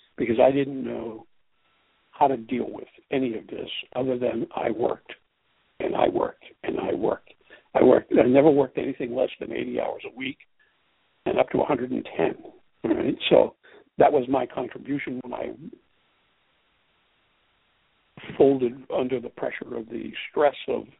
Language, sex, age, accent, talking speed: English, male, 60-79, American, 150 wpm